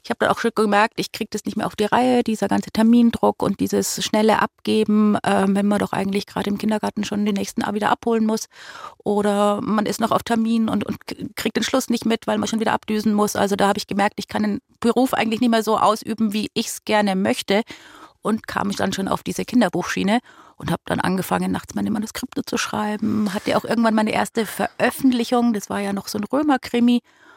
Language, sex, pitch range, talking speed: German, female, 210-240 Hz, 230 wpm